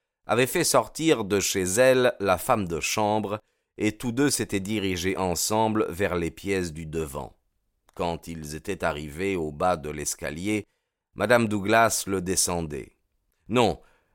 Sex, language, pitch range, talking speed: male, French, 85-115 Hz, 145 wpm